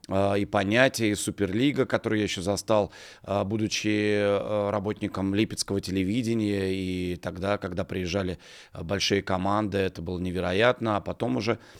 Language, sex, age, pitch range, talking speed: English, male, 30-49, 100-120 Hz, 115 wpm